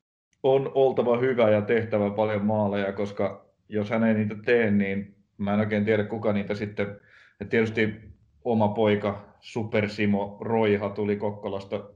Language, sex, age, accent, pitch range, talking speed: Finnish, male, 30-49, native, 100-110 Hz, 145 wpm